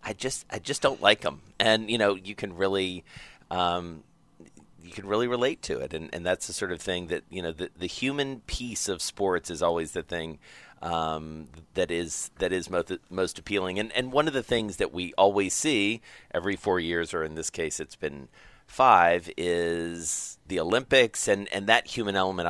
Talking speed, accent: 205 wpm, American